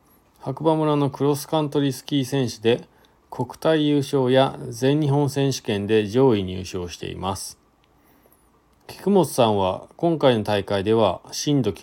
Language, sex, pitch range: Japanese, male, 105-145 Hz